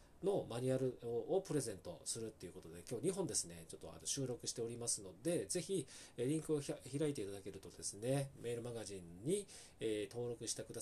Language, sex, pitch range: Japanese, male, 100-155 Hz